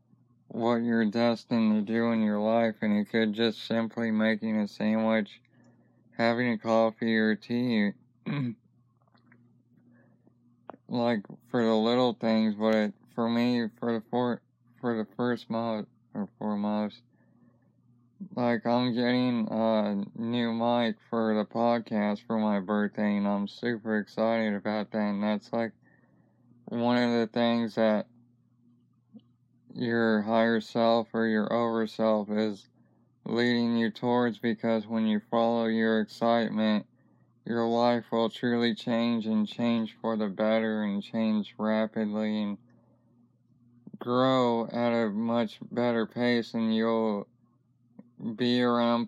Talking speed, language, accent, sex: 125 wpm, English, American, male